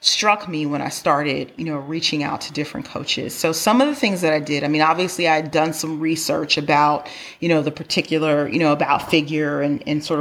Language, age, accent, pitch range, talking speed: English, 30-49, American, 150-170 Hz, 235 wpm